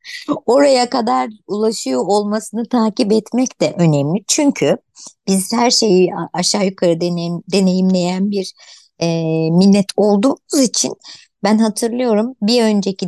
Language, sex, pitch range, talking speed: Turkish, male, 180-245 Hz, 115 wpm